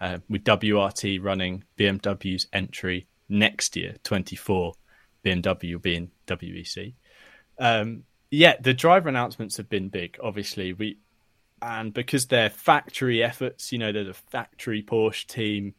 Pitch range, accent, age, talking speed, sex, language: 100-115 Hz, British, 20-39, 135 wpm, male, English